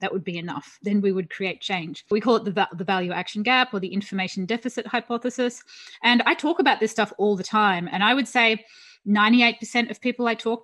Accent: Australian